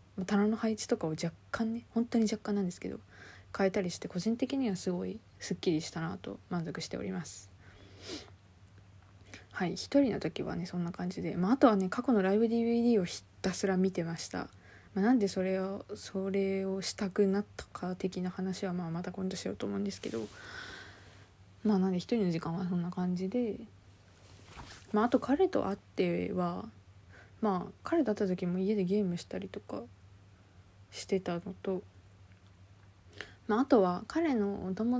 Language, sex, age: Japanese, female, 20-39